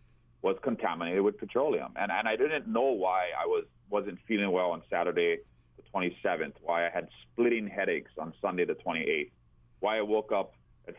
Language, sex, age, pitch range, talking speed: English, male, 30-49, 75-120 Hz, 180 wpm